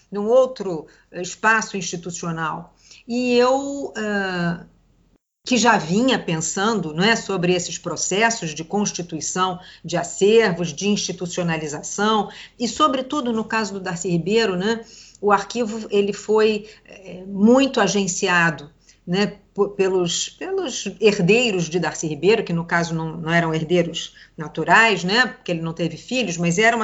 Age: 50-69